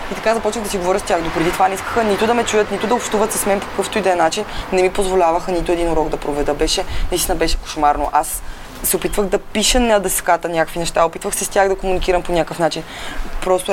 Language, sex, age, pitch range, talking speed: Bulgarian, female, 20-39, 165-210 Hz, 260 wpm